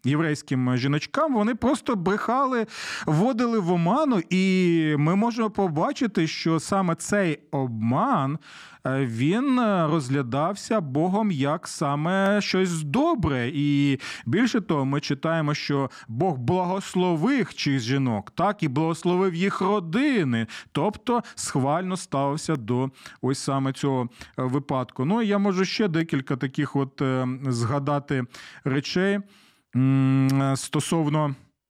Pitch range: 140-195 Hz